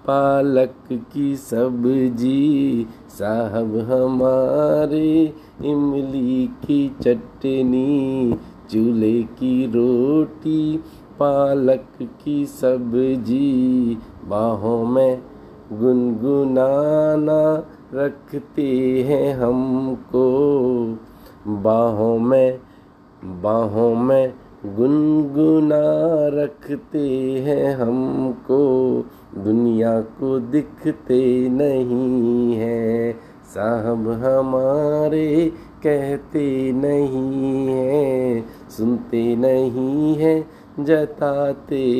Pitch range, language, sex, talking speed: 120-145 Hz, Hindi, male, 60 wpm